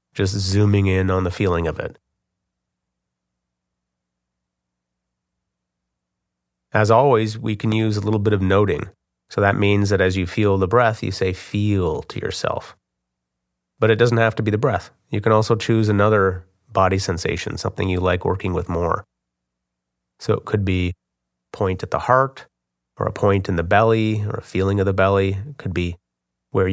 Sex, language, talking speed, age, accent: male, English, 175 wpm, 30-49, American